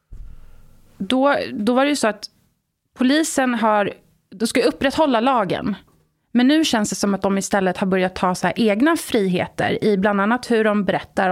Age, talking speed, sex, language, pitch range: 30-49, 180 wpm, female, Swedish, 195-250 Hz